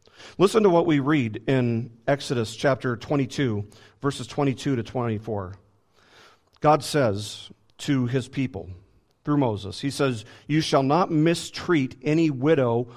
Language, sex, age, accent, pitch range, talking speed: English, male, 40-59, American, 110-145 Hz, 130 wpm